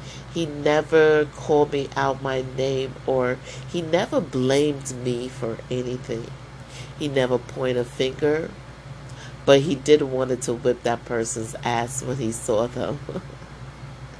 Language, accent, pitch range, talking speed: English, American, 130-140 Hz, 135 wpm